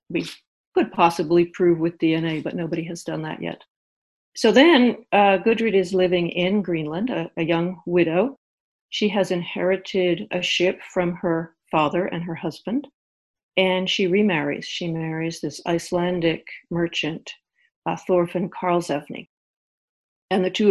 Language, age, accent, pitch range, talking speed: English, 50-69, American, 165-190 Hz, 140 wpm